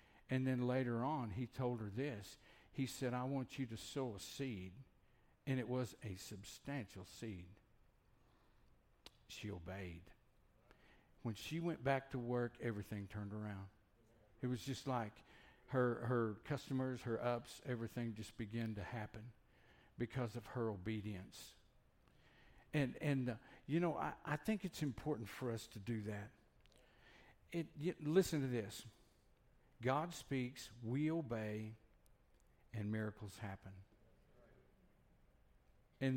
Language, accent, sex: English, American, male